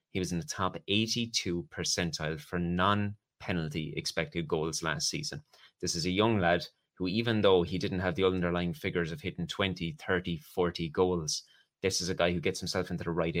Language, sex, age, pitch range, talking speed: English, male, 20-39, 85-100 Hz, 195 wpm